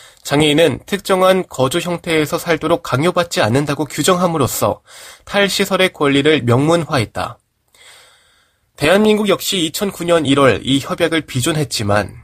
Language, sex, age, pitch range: Korean, male, 20-39, 125-175 Hz